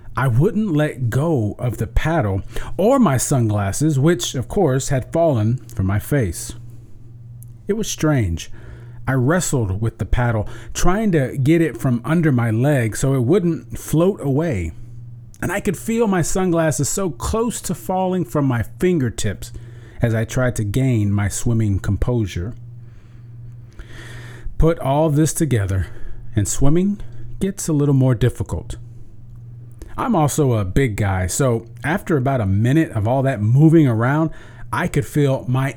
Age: 40-59